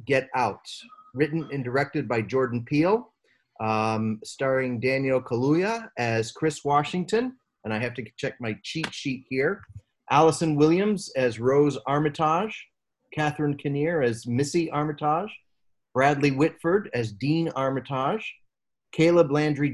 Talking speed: 125 wpm